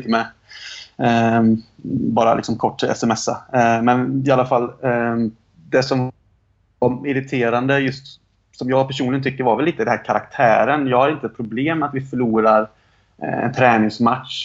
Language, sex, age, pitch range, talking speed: Swedish, male, 30-49, 110-130 Hz, 135 wpm